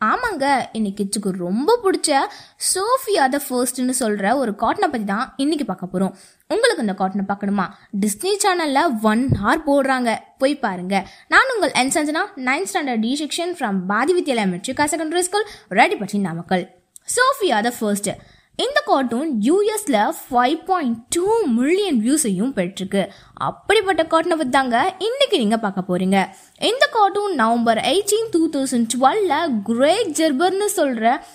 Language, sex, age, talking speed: Tamil, female, 20-39, 60 wpm